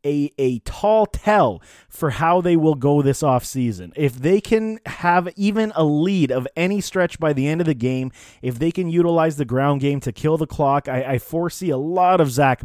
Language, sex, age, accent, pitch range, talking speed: English, male, 30-49, American, 130-165 Hz, 215 wpm